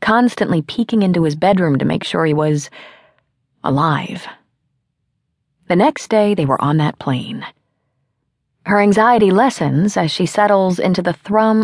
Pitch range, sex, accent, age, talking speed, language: 140-195 Hz, female, American, 30-49, 145 wpm, English